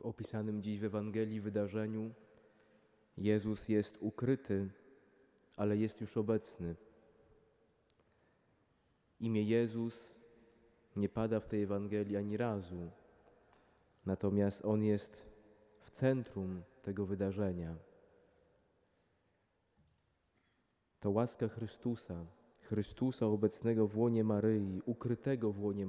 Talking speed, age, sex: 90 wpm, 20-39, male